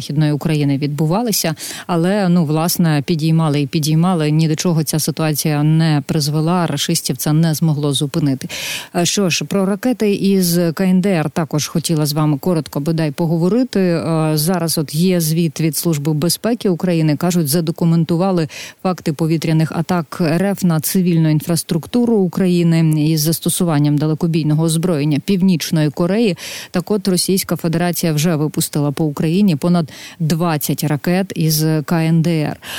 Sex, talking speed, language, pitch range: female, 130 wpm, Ukrainian, 155-180 Hz